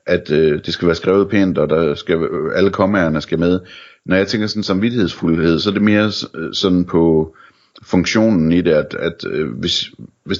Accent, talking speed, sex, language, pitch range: native, 195 wpm, male, Danish, 80-95 Hz